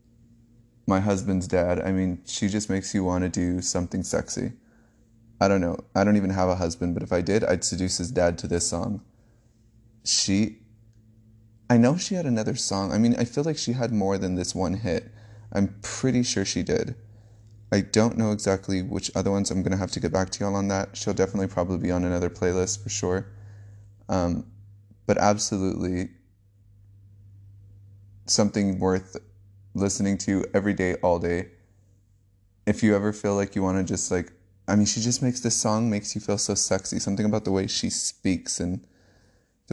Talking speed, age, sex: 195 wpm, 20-39, male